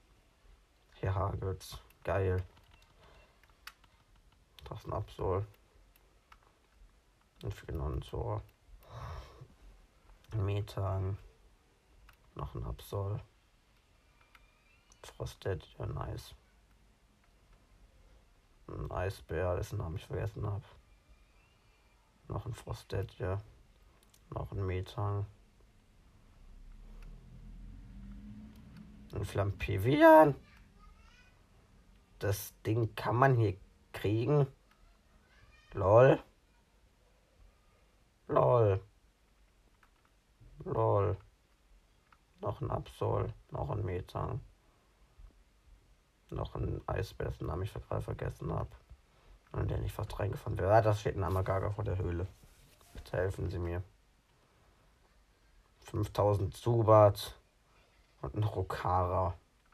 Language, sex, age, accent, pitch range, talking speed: German, male, 50-69, German, 90-110 Hz, 75 wpm